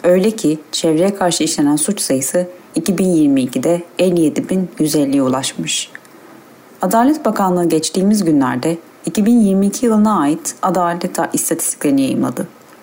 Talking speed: 95 wpm